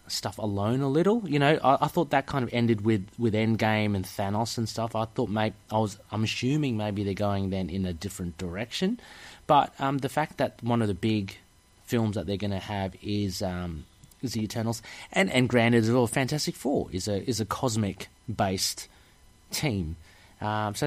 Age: 30-49